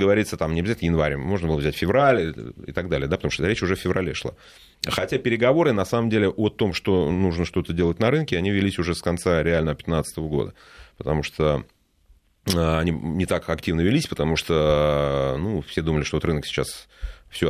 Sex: male